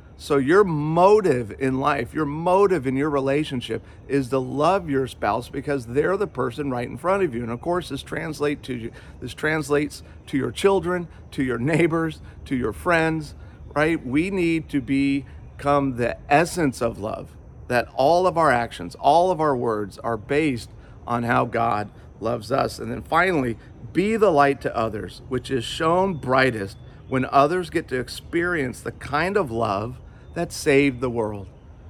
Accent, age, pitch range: American, 40-59, 115-150 Hz